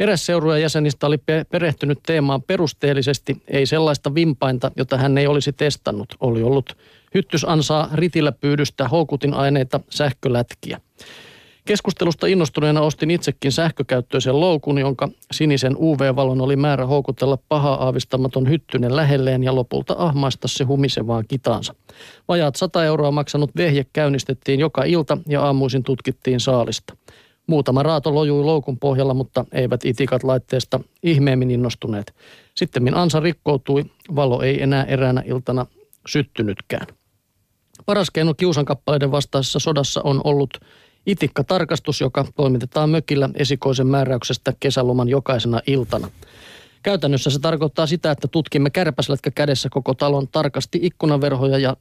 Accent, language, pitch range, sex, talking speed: native, Finnish, 130-155 Hz, male, 125 wpm